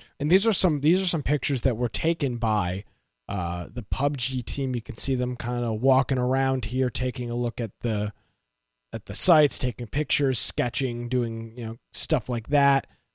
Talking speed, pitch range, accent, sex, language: 190 wpm, 105-140 Hz, American, male, English